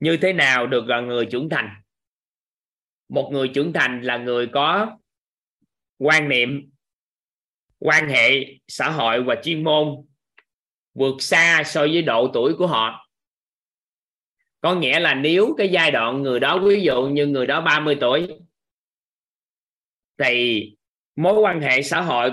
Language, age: Vietnamese, 20-39